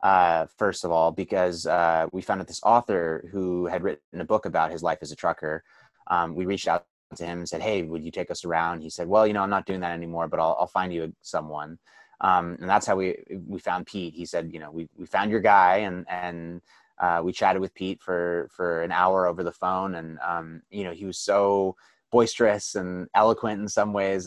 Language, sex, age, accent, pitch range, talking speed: English, male, 20-39, American, 85-95 Hz, 235 wpm